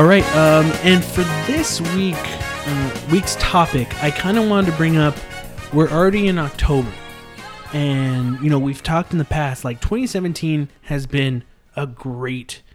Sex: male